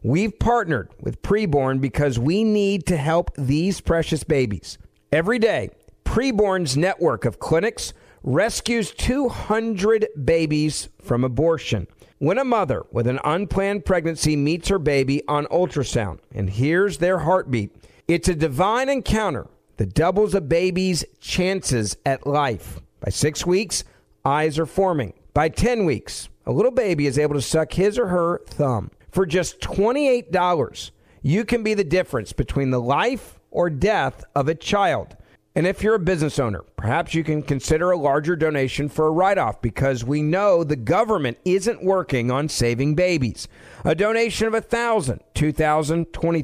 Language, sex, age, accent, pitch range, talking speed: English, male, 50-69, American, 135-195 Hz, 160 wpm